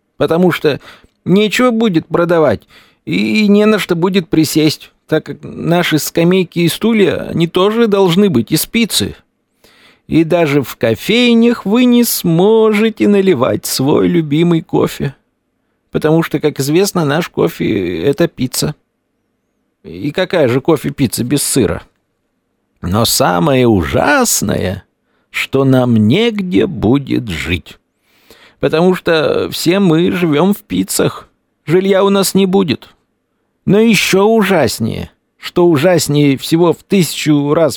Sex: male